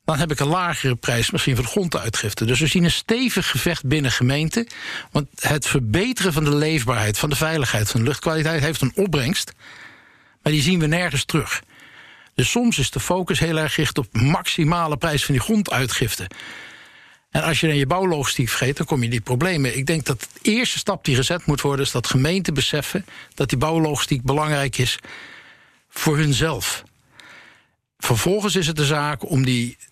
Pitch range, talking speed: 130-160 Hz, 190 wpm